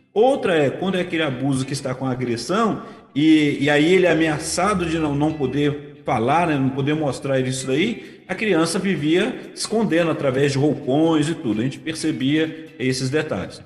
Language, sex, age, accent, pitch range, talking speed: Portuguese, male, 40-59, Brazilian, 140-175 Hz, 180 wpm